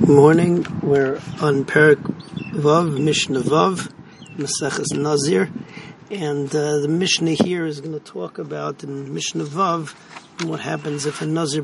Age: 40-59